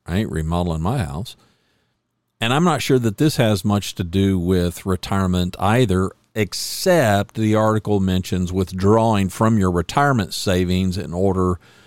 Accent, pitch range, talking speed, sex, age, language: American, 90-115 Hz, 145 wpm, male, 50-69, English